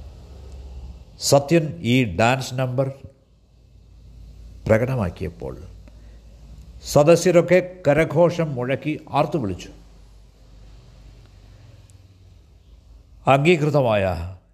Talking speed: 45 wpm